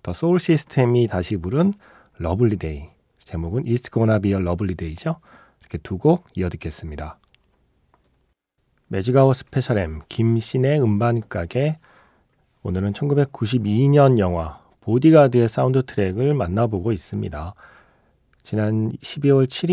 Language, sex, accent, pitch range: Korean, male, native, 100-140 Hz